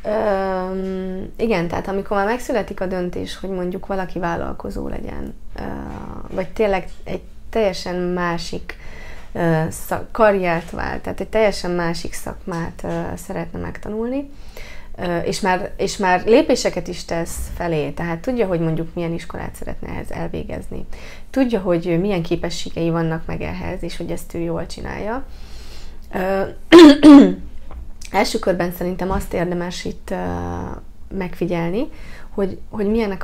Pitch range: 165-200 Hz